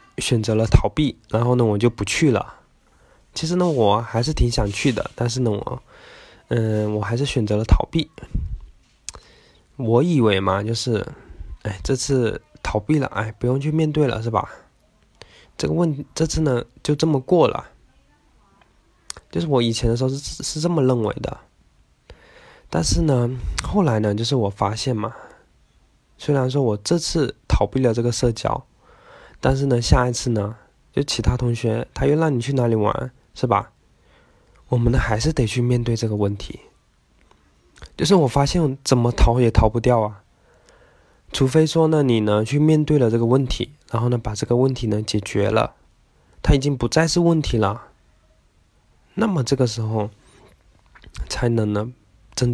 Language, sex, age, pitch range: Chinese, male, 20-39, 105-135 Hz